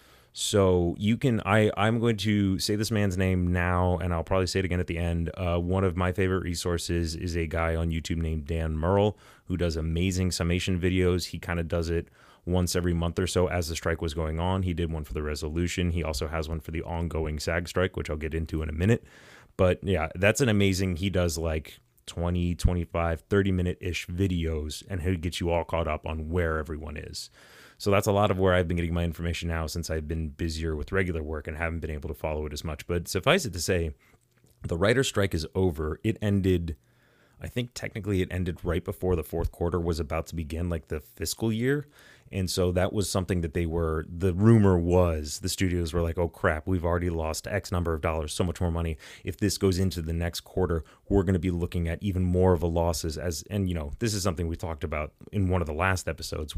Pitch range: 80-95 Hz